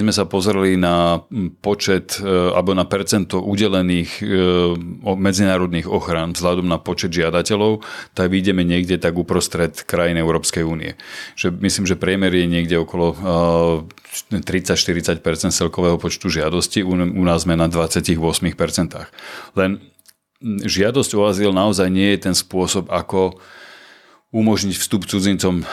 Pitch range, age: 85-95 Hz, 40-59